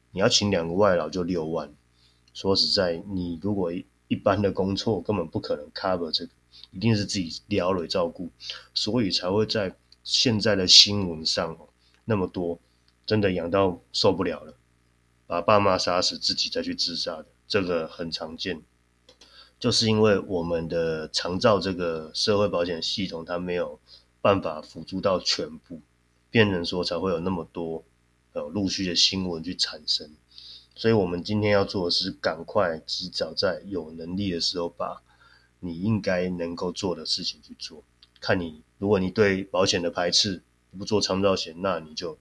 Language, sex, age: Chinese, male, 30-49